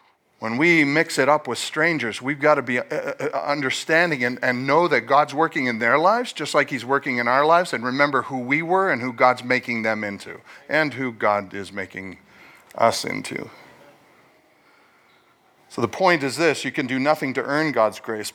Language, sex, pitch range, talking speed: English, male, 120-165 Hz, 190 wpm